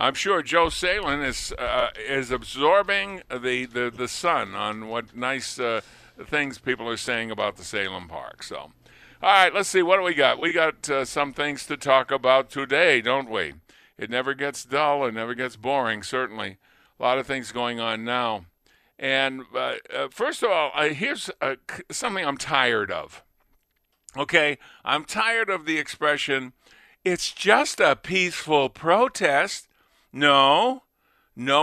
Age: 50-69